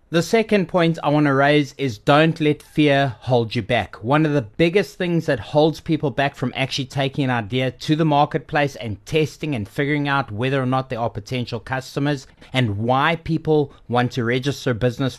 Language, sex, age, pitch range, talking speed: English, male, 30-49, 120-150 Hz, 200 wpm